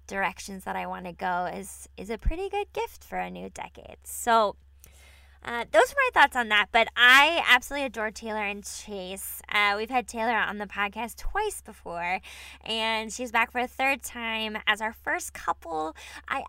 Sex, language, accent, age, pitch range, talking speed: female, English, American, 10-29, 195-245 Hz, 190 wpm